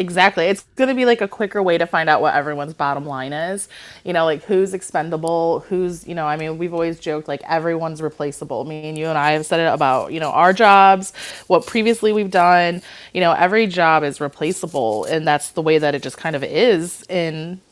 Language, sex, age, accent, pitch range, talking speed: English, female, 30-49, American, 155-185 Hz, 225 wpm